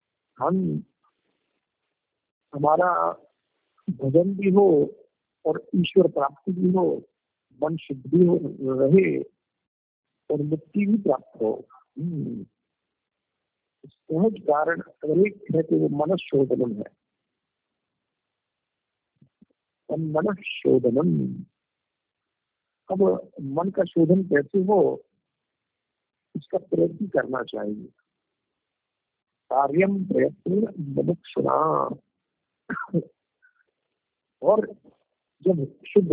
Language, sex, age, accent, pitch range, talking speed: Hindi, male, 50-69, native, 145-195 Hz, 65 wpm